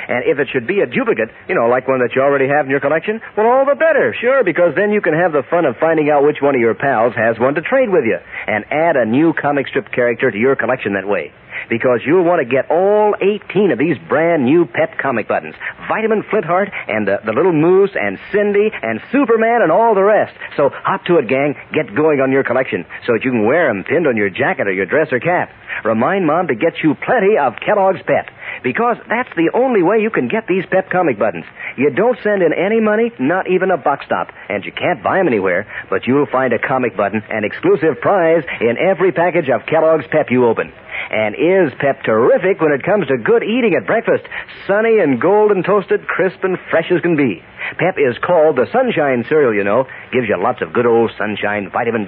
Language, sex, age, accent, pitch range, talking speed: English, male, 50-69, American, 135-210 Hz, 235 wpm